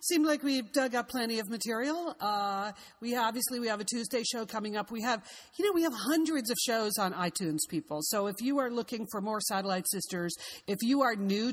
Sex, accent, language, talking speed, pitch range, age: female, American, English, 225 wpm, 180-225 Hz, 40-59